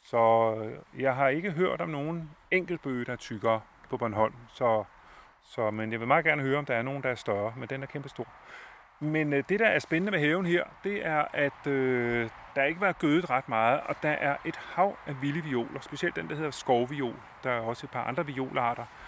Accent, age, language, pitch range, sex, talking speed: native, 30-49, Danish, 120-165 Hz, male, 225 wpm